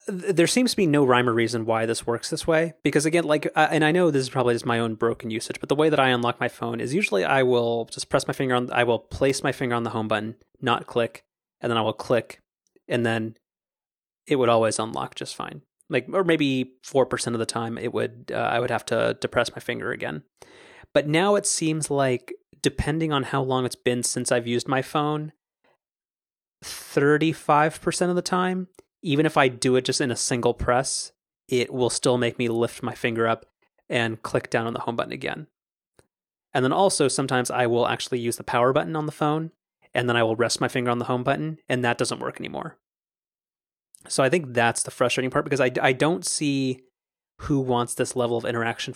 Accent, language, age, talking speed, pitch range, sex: American, English, 30-49, 225 wpm, 120-150 Hz, male